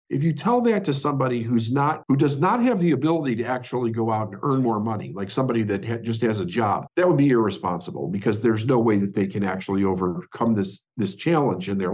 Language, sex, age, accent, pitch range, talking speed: English, male, 50-69, American, 110-160 Hz, 240 wpm